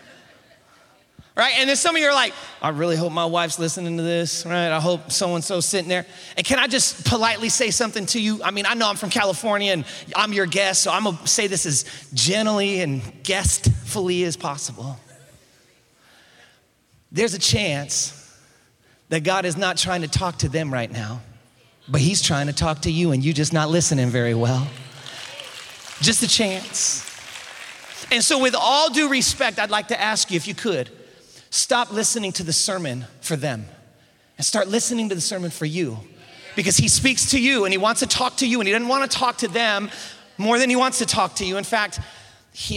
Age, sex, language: 30-49, male, English